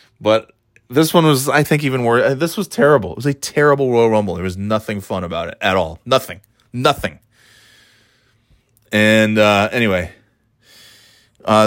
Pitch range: 100-120 Hz